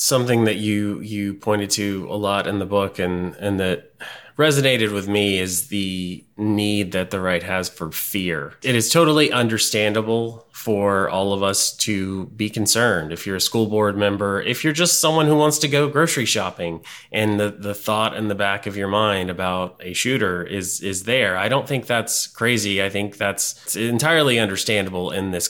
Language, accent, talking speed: English, American, 195 wpm